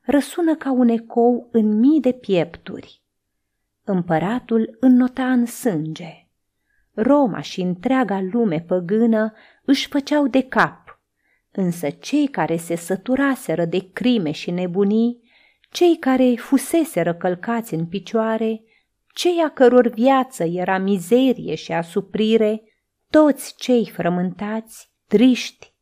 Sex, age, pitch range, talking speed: female, 30-49, 180-255 Hz, 110 wpm